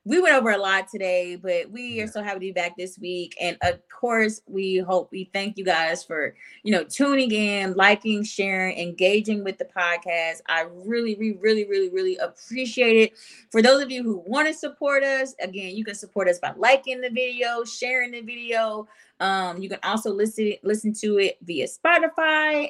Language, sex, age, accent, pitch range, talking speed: English, female, 20-39, American, 195-270 Hz, 200 wpm